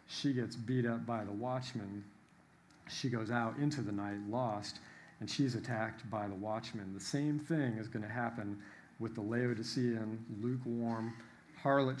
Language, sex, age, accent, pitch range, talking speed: English, male, 50-69, American, 105-125 Hz, 160 wpm